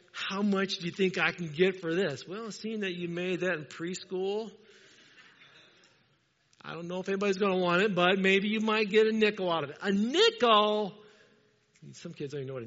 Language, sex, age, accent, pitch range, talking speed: English, male, 50-69, American, 170-215 Hz, 215 wpm